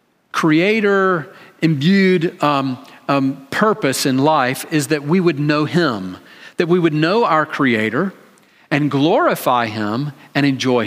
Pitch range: 145-205 Hz